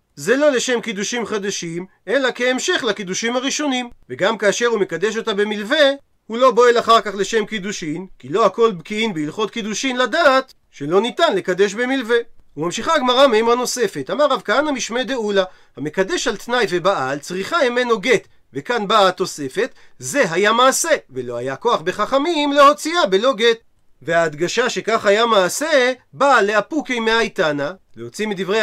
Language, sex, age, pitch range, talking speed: Hebrew, male, 40-59, 190-250 Hz, 150 wpm